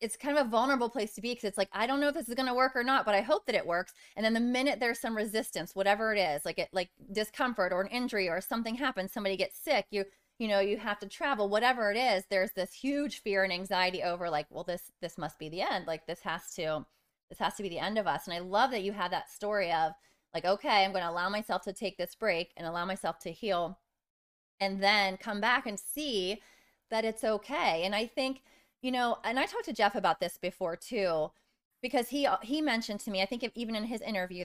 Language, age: English, 20-39